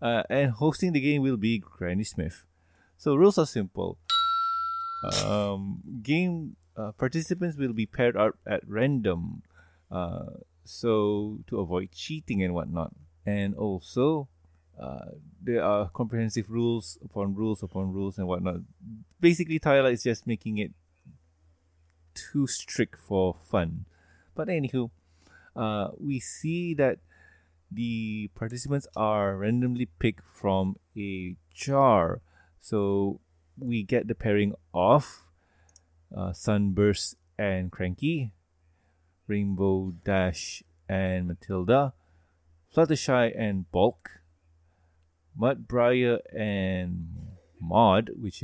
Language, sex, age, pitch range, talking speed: English, male, 20-39, 85-120 Hz, 110 wpm